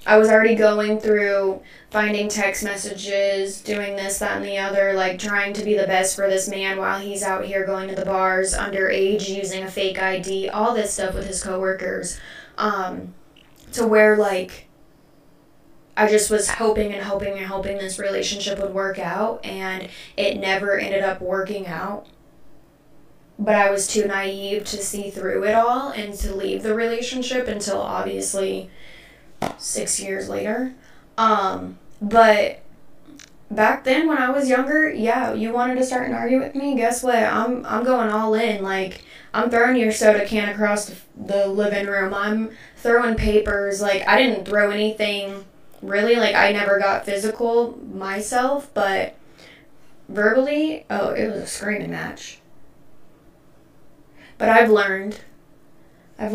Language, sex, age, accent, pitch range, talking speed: English, female, 20-39, American, 195-220 Hz, 160 wpm